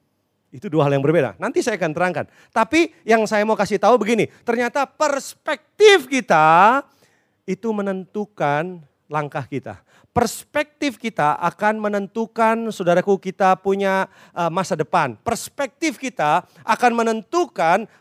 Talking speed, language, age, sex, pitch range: 120 wpm, Indonesian, 30-49, male, 160-230 Hz